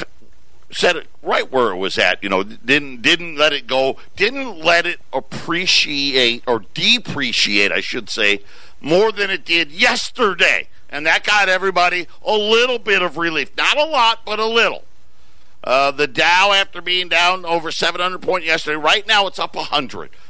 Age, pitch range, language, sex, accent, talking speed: 50-69, 110-170 Hz, English, male, American, 170 wpm